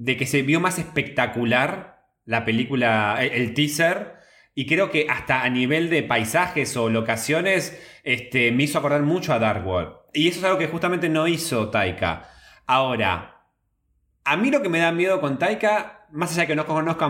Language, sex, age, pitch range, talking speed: Spanish, male, 20-39, 120-170 Hz, 185 wpm